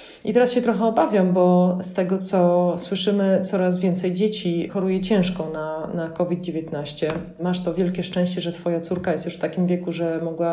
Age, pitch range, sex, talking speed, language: 20-39, 170-205 Hz, female, 180 wpm, Polish